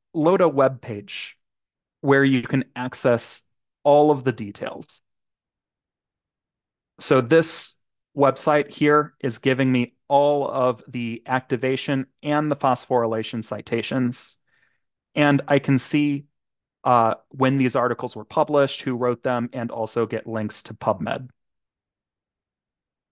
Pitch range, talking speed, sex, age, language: 120-150 Hz, 120 wpm, male, 30-49, English